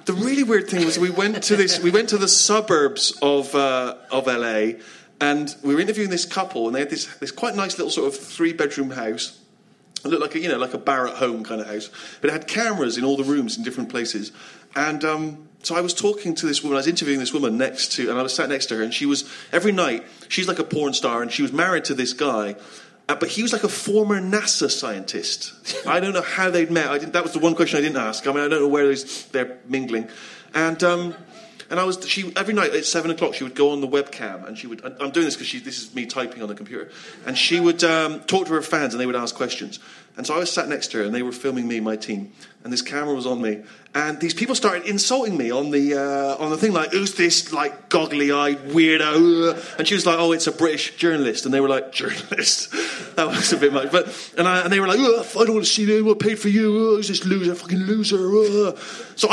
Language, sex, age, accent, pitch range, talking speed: English, male, 30-49, British, 140-205 Hz, 265 wpm